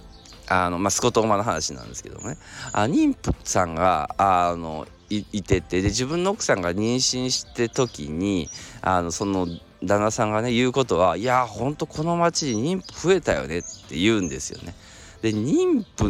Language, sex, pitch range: Japanese, male, 95-145 Hz